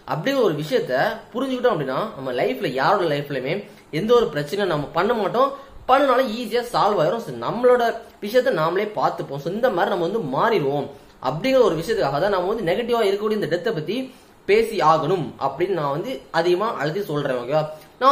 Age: 20-39